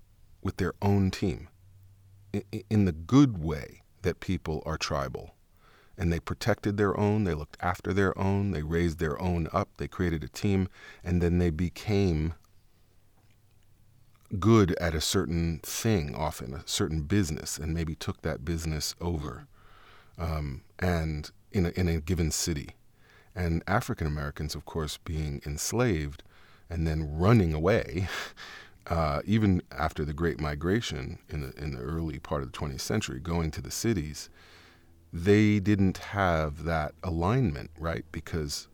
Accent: American